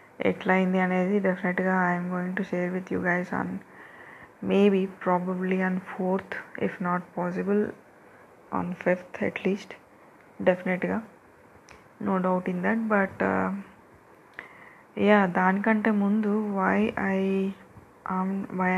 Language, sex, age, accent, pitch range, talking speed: Telugu, female, 20-39, native, 180-200 Hz, 105 wpm